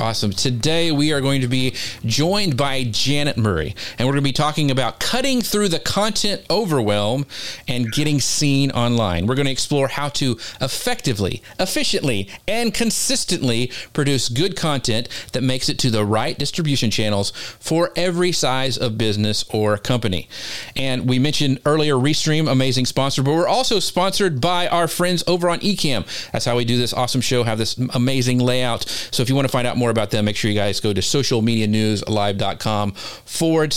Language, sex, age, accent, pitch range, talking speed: English, male, 40-59, American, 110-150 Hz, 180 wpm